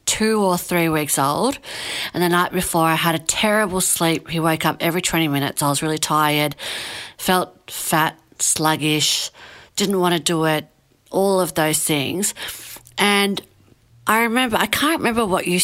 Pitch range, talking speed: 155-195 Hz, 170 wpm